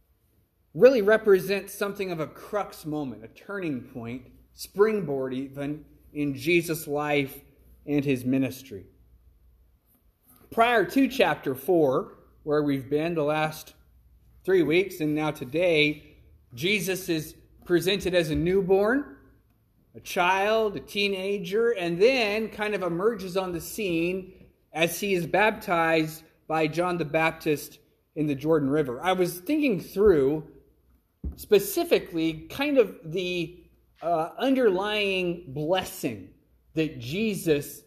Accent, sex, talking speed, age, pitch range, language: American, male, 120 wpm, 30-49, 150-200 Hz, English